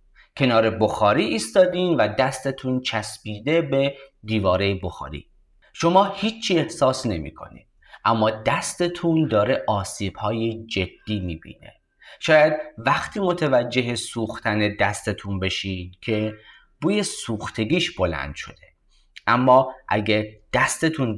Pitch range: 95-140 Hz